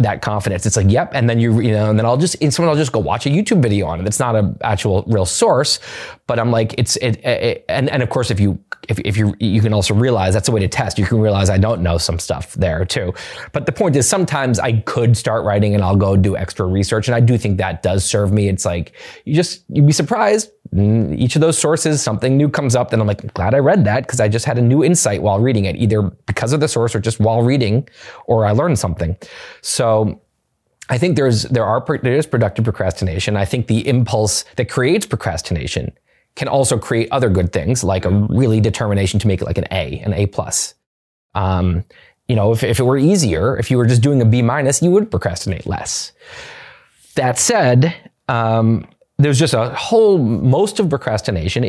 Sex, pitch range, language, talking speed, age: male, 100-130 Hz, English, 230 wpm, 20-39